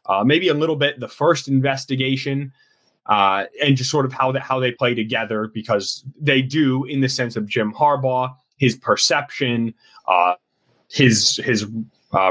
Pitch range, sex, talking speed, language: 110-140 Hz, male, 165 wpm, English